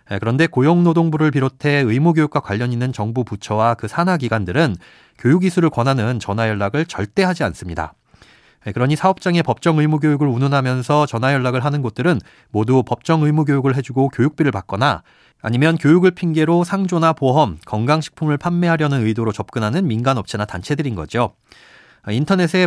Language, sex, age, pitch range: Korean, male, 30-49, 115-160 Hz